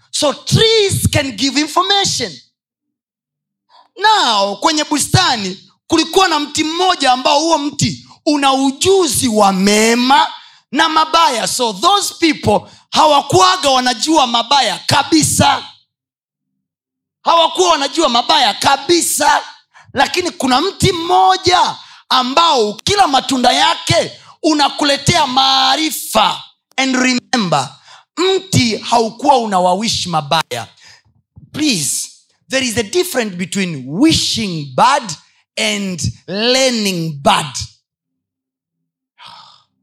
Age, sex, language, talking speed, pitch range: 30-49, male, Swahili, 90 wpm, 195-310 Hz